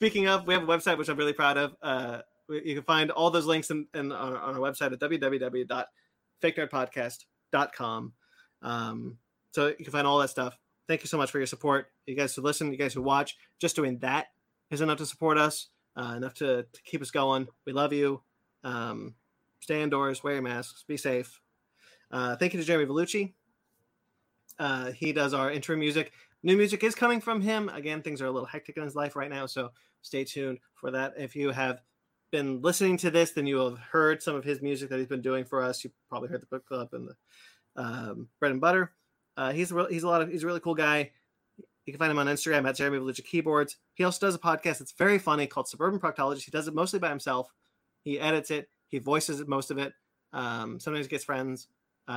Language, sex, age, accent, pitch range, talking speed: English, male, 30-49, American, 130-160 Hz, 225 wpm